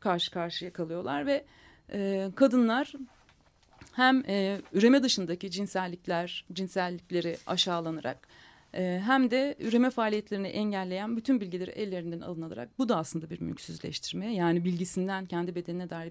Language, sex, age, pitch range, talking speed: Turkish, female, 40-59, 180-245 Hz, 125 wpm